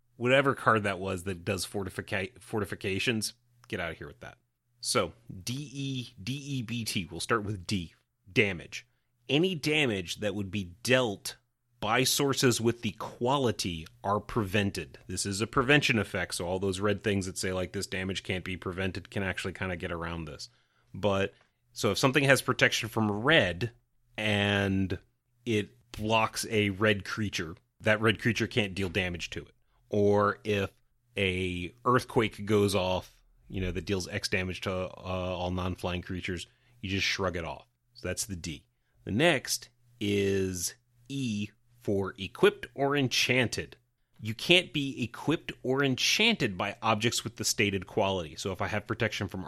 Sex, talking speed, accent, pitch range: male, 165 wpm, American, 95-120 Hz